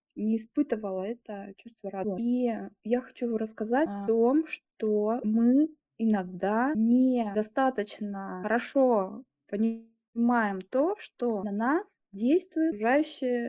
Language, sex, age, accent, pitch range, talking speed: Russian, female, 20-39, native, 205-255 Hz, 105 wpm